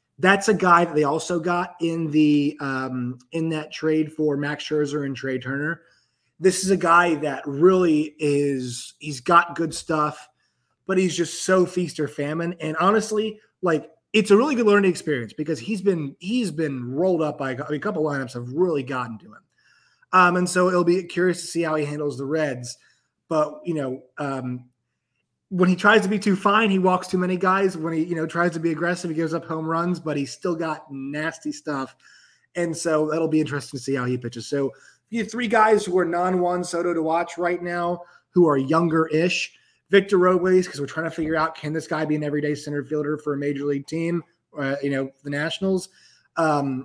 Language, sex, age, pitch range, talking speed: English, male, 20-39, 140-175 Hz, 215 wpm